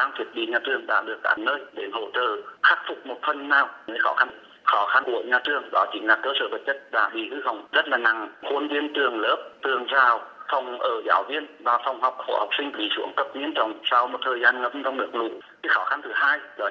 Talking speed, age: 260 wpm, 30-49